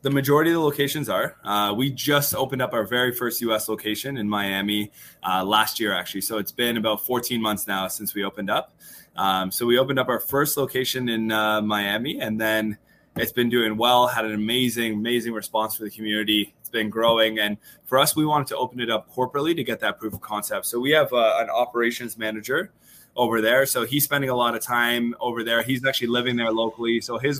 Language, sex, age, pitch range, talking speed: English, male, 20-39, 110-130 Hz, 225 wpm